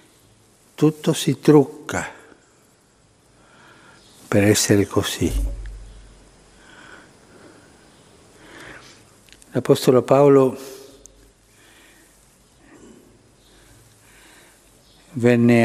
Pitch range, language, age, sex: 115-155 Hz, Italian, 60-79, male